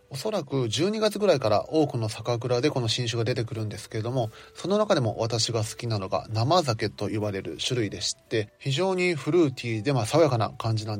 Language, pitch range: Japanese, 110-145 Hz